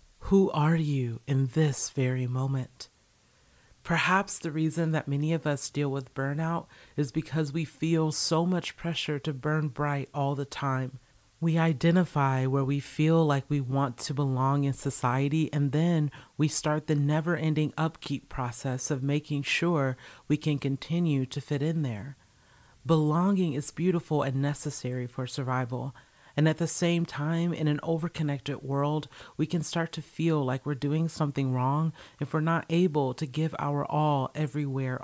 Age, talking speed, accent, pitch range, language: 40-59, 165 wpm, American, 135-160 Hz, English